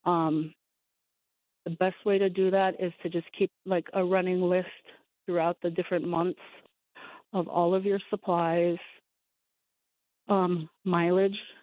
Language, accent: English, American